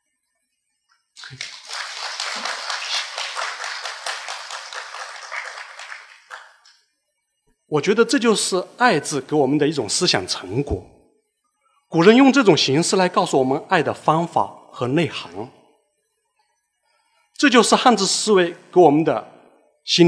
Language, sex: Chinese, male